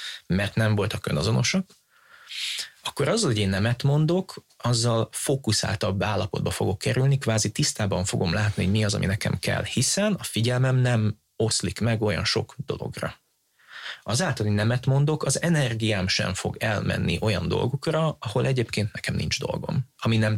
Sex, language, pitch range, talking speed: male, Hungarian, 105-135 Hz, 150 wpm